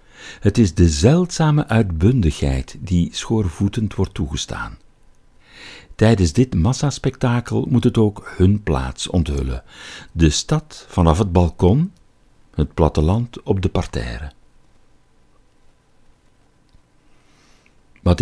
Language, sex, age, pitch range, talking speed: Dutch, male, 60-79, 80-120 Hz, 95 wpm